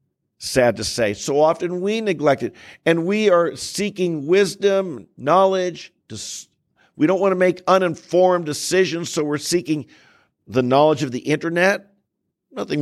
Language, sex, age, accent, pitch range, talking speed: English, male, 50-69, American, 130-170 Hz, 140 wpm